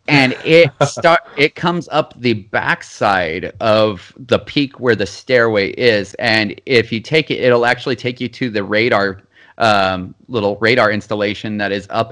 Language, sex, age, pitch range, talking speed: English, male, 30-49, 105-135 Hz, 170 wpm